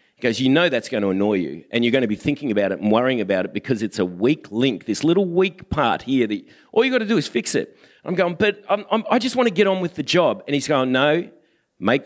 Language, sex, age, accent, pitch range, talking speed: English, male, 40-59, Australian, 125-165 Hz, 280 wpm